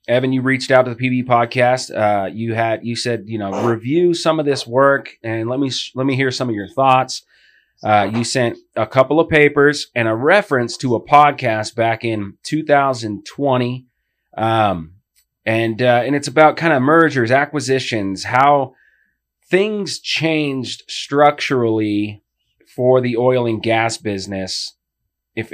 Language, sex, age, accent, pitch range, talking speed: English, male, 30-49, American, 115-140 Hz, 160 wpm